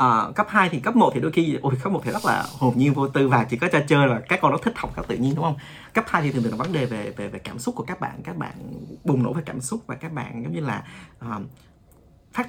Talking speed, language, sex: 310 wpm, Vietnamese, male